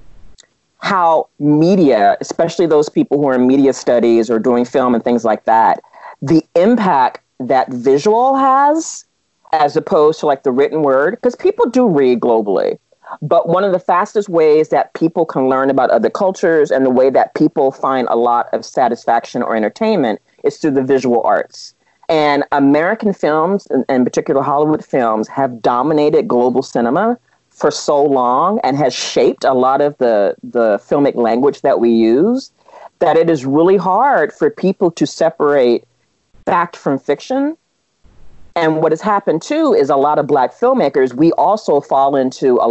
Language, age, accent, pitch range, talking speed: English, 40-59, American, 130-185 Hz, 170 wpm